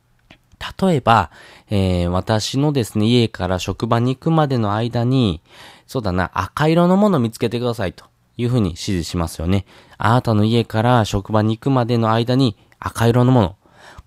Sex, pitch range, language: male, 95-140 Hz, Japanese